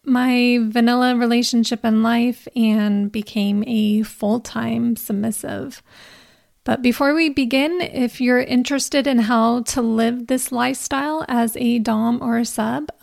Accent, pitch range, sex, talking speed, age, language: American, 220-245 Hz, female, 135 wpm, 30-49, English